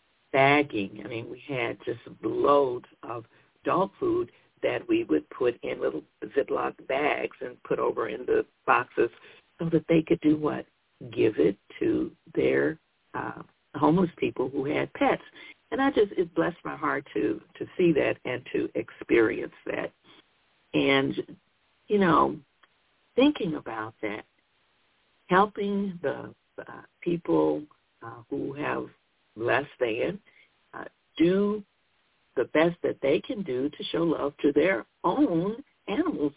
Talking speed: 140 wpm